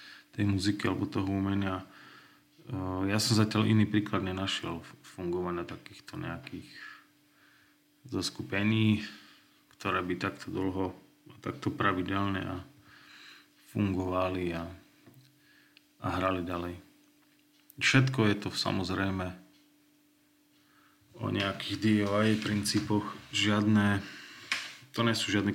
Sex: male